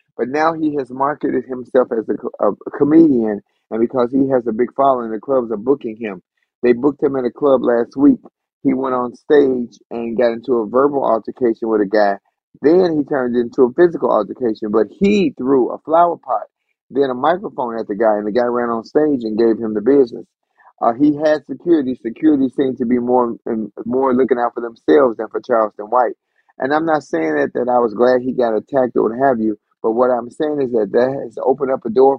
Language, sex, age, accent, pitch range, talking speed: English, male, 30-49, American, 115-140 Hz, 220 wpm